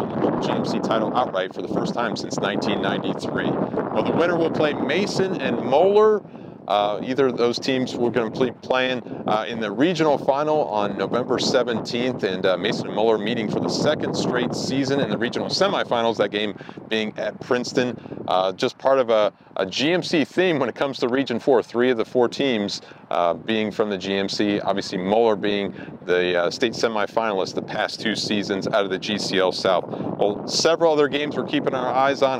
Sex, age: male, 40-59